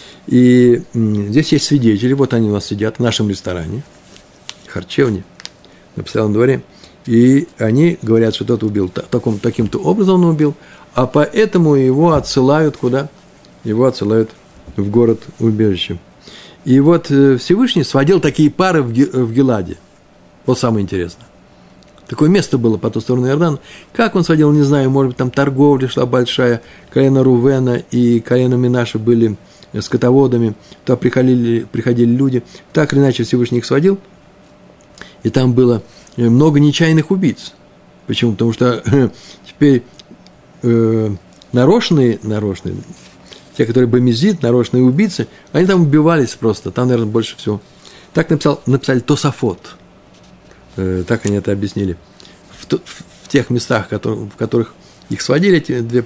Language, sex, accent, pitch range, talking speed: Russian, male, native, 110-140 Hz, 135 wpm